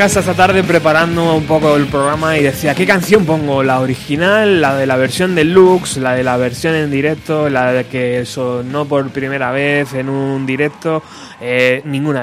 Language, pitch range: Spanish, 125-145 Hz